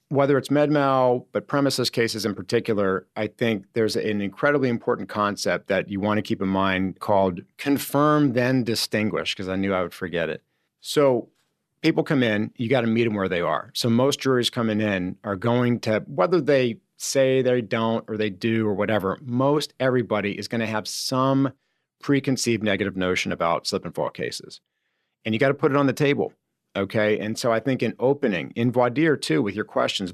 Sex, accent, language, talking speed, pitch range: male, American, English, 200 wpm, 105-130 Hz